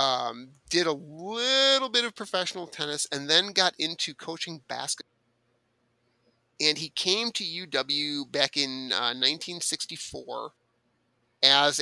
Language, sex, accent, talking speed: English, male, American, 120 wpm